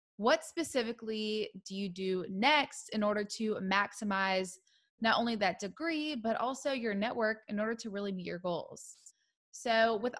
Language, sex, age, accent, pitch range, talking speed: English, female, 20-39, American, 200-255 Hz, 160 wpm